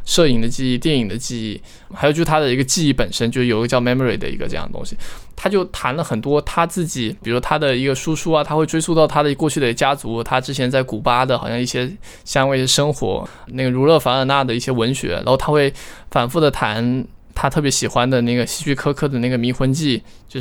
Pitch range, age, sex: 120-145 Hz, 20-39, male